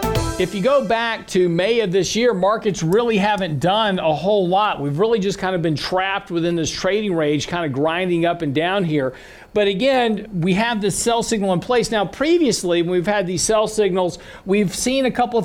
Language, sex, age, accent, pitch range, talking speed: English, male, 50-69, American, 175-215 Hz, 220 wpm